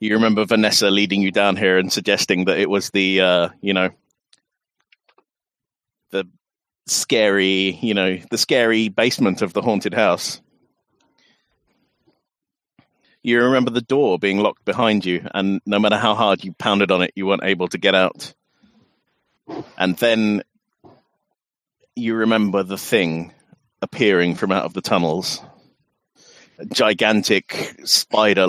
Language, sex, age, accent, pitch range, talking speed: English, male, 30-49, British, 95-120 Hz, 135 wpm